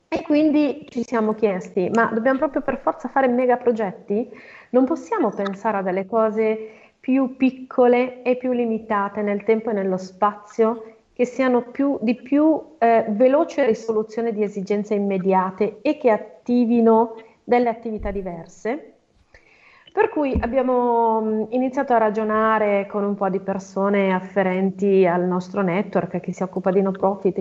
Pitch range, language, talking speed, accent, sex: 195-235 Hz, Italian, 145 wpm, native, female